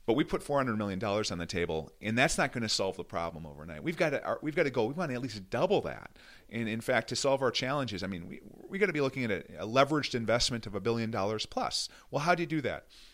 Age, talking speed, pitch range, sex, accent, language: 40-59, 290 wpm, 90-120 Hz, male, American, English